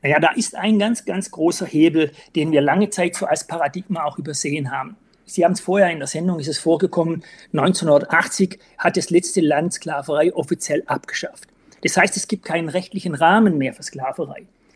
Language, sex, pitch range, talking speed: German, male, 160-200 Hz, 185 wpm